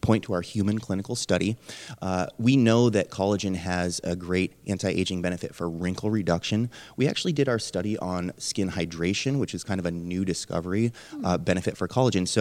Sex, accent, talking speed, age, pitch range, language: male, American, 190 wpm, 30-49, 90-110 Hz, English